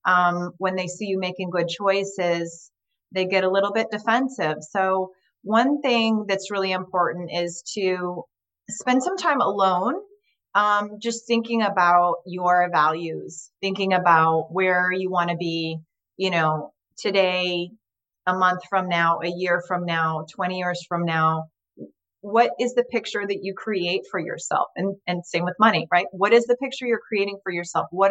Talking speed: 165 wpm